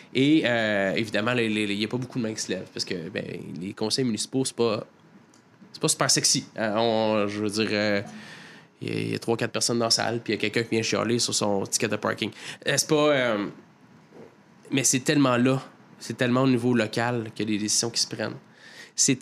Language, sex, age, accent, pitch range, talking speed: French, male, 20-39, Canadian, 110-130 Hz, 225 wpm